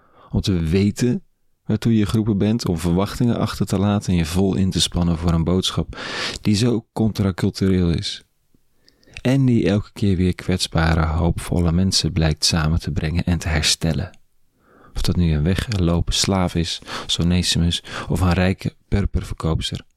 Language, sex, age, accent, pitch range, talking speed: Dutch, male, 40-59, Dutch, 85-105 Hz, 155 wpm